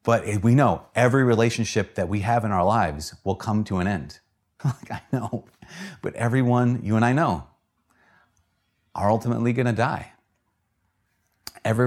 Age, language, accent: 30-49, English, American